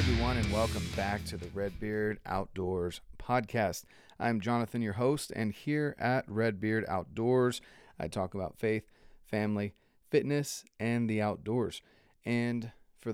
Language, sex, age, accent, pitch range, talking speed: English, male, 30-49, American, 105-125 Hz, 135 wpm